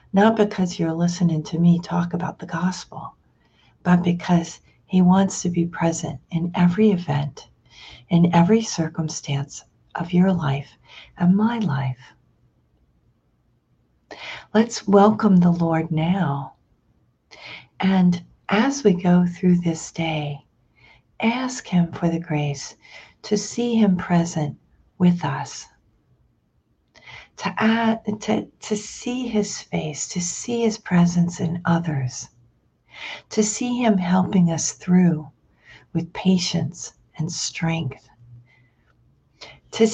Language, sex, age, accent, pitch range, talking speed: English, female, 50-69, American, 155-190 Hz, 110 wpm